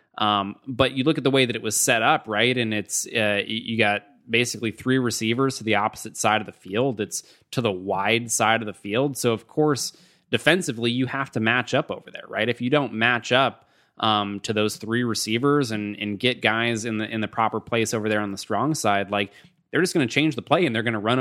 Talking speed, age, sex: 245 wpm, 20-39, male